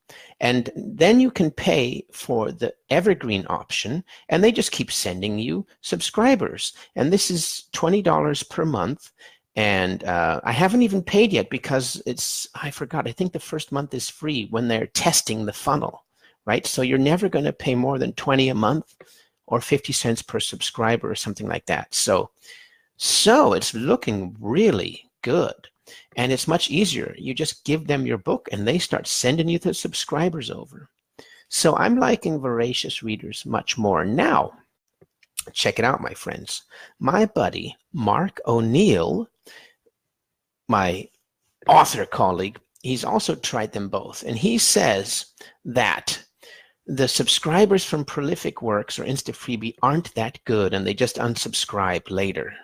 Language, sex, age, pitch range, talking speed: English, male, 50-69, 115-185 Hz, 155 wpm